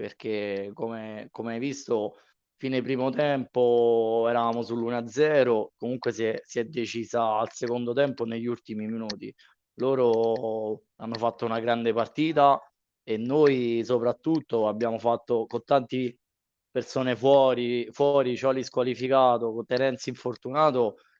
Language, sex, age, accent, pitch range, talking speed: Italian, male, 20-39, native, 115-140 Hz, 120 wpm